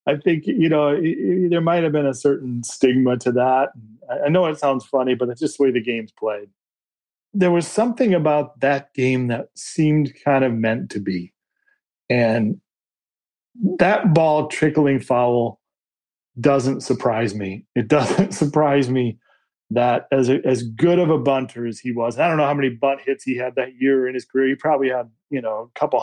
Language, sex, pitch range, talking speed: English, male, 125-160 Hz, 190 wpm